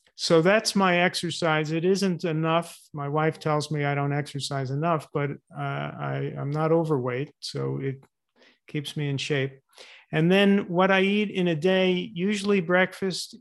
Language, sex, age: English, male, 40-59